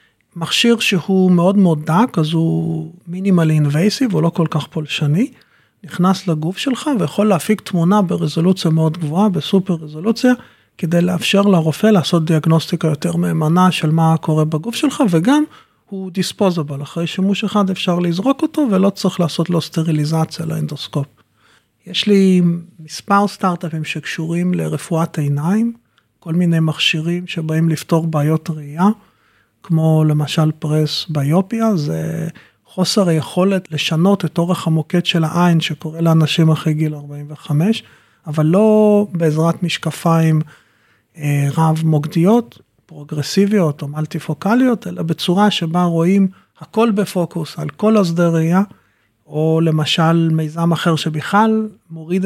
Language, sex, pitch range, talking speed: Hebrew, male, 155-195 Hz, 125 wpm